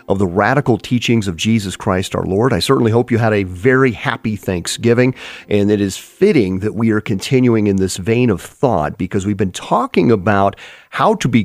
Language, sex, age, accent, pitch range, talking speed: English, male, 40-59, American, 105-135 Hz, 205 wpm